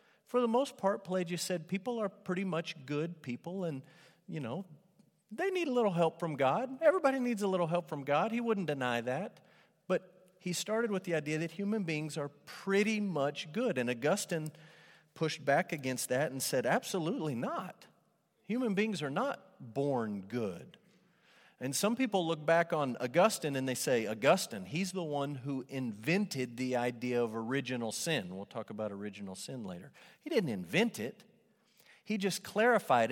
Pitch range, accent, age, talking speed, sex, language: 145-210 Hz, American, 40-59, 175 wpm, male, English